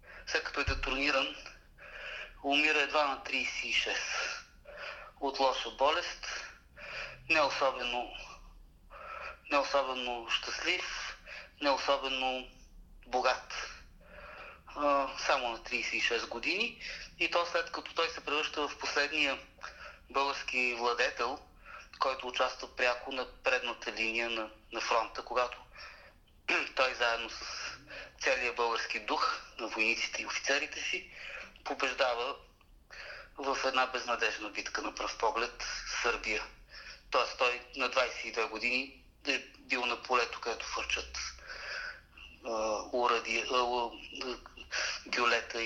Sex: male